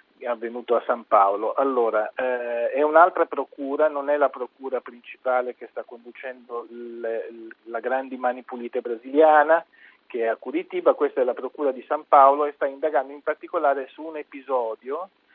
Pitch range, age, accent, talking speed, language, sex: 125-185 Hz, 40-59, native, 160 wpm, Italian, male